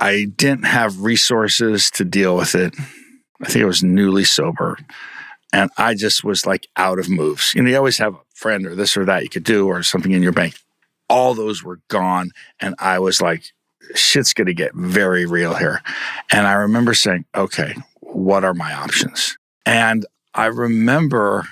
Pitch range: 100-135 Hz